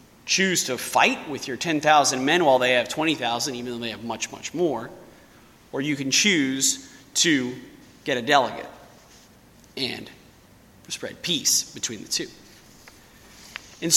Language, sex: English, male